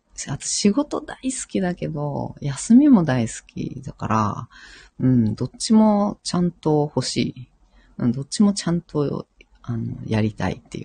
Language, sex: Japanese, female